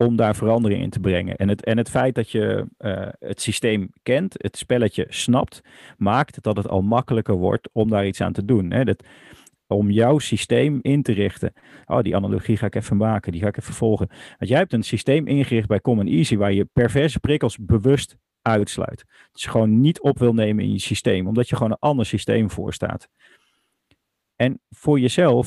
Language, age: Dutch, 40-59